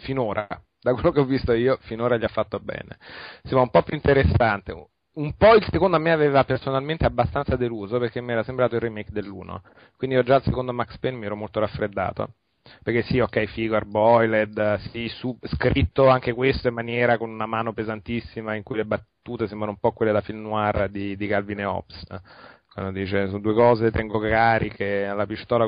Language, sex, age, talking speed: Italian, male, 30-49, 195 wpm